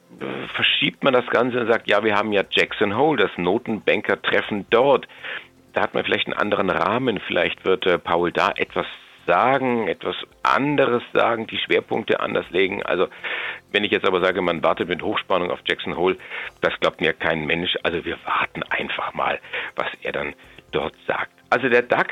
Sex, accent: male, German